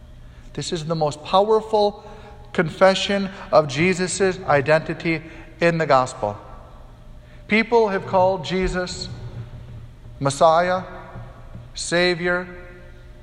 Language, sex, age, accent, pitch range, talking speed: English, male, 50-69, American, 120-185 Hz, 80 wpm